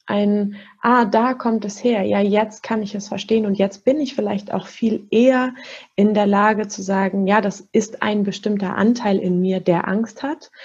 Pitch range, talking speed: 190-220 Hz, 205 wpm